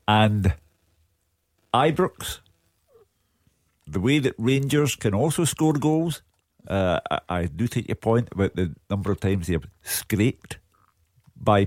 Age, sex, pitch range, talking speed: 50-69, male, 100-125 Hz, 130 wpm